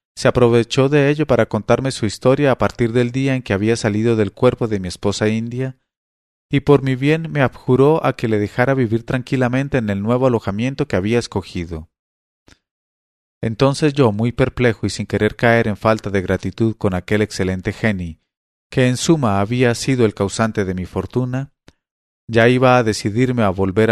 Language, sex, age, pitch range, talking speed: English, male, 40-59, 100-130 Hz, 185 wpm